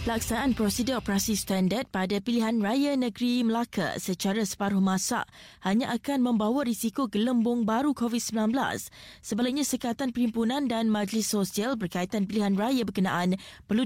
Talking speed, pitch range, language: 130 wpm, 200-245 Hz, Malay